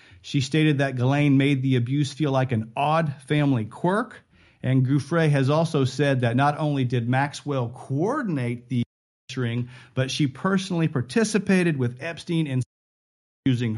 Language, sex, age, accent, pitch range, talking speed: English, male, 40-59, American, 125-170 Hz, 150 wpm